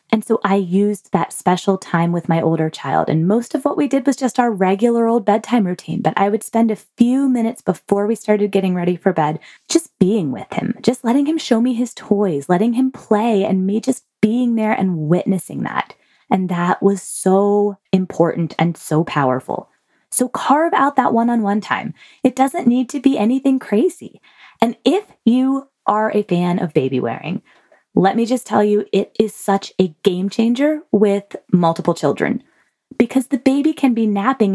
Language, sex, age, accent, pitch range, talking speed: English, female, 20-39, American, 175-245 Hz, 190 wpm